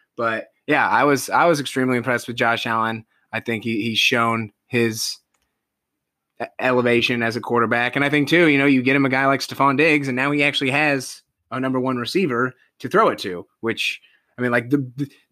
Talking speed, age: 210 wpm, 20-39